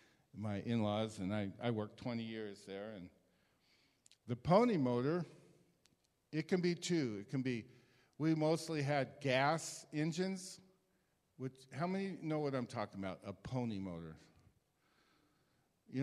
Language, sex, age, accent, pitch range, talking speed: English, male, 50-69, American, 130-165 Hz, 140 wpm